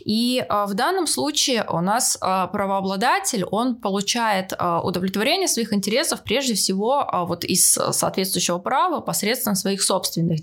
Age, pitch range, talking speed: 20-39, 185-245 Hz, 115 wpm